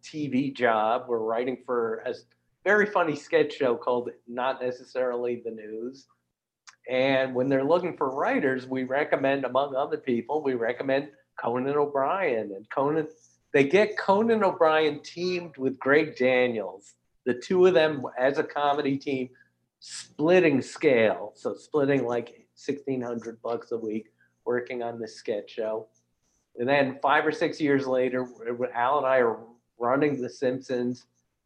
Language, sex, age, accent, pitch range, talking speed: English, male, 50-69, American, 120-140 Hz, 145 wpm